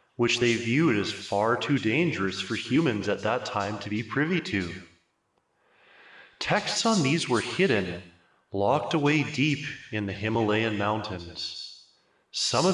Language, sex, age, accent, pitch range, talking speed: English, male, 20-39, American, 100-140 Hz, 140 wpm